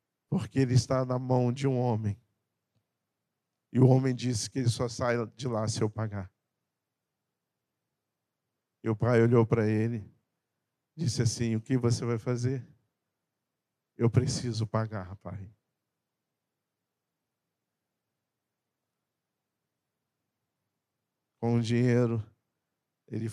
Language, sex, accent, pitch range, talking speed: Portuguese, male, Brazilian, 105-125 Hz, 110 wpm